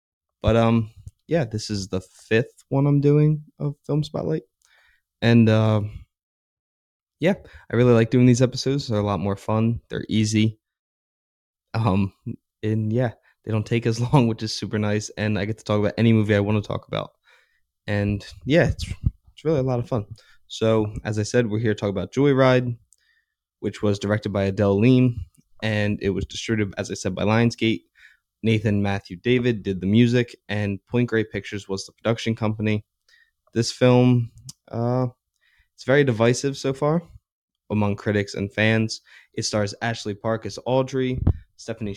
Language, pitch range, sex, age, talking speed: English, 100-120 Hz, male, 20-39, 175 wpm